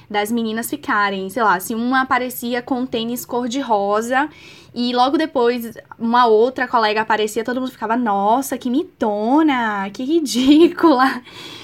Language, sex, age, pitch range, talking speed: Portuguese, female, 10-29, 225-305 Hz, 135 wpm